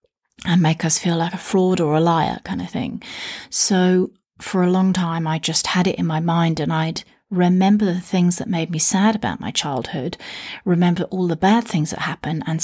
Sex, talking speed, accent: female, 215 wpm, British